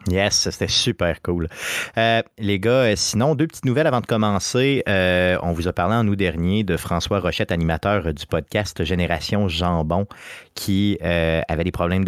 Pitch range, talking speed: 85-105 Hz, 175 wpm